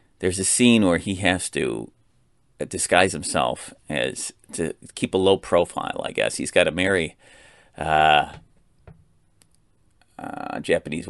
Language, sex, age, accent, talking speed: English, male, 30-49, American, 130 wpm